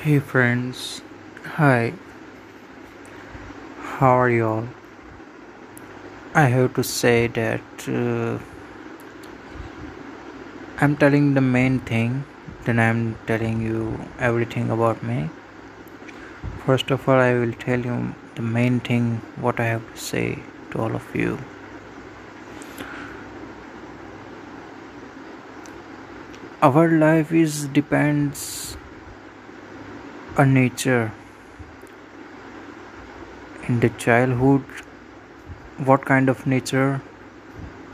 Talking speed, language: 90 wpm, Gujarati